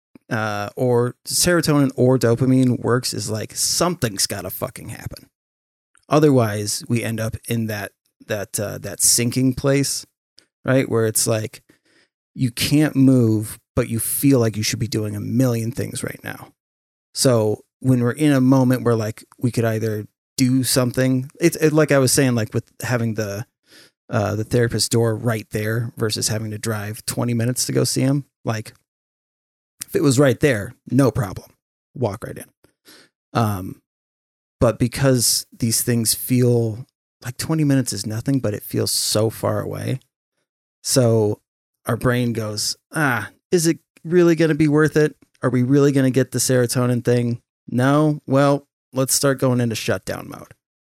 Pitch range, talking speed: 110-130 Hz, 165 wpm